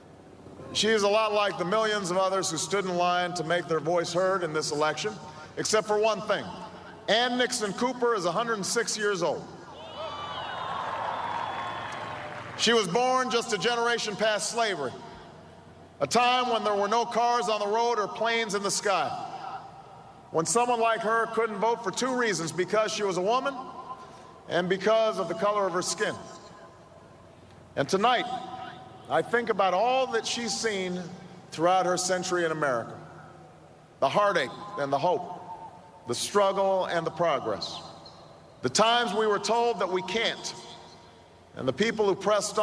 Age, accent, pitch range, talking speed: 40-59, American, 180-235 Hz, 160 wpm